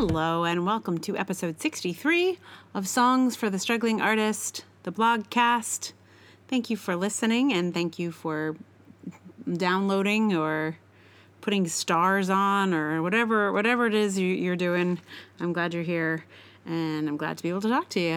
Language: English